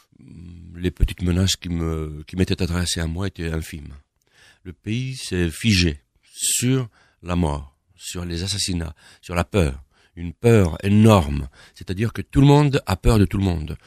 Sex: male